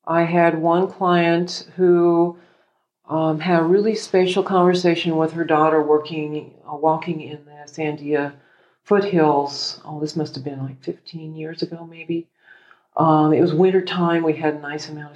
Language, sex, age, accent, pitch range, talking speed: English, female, 40-59, American, 150-185 Hz, 160 wpm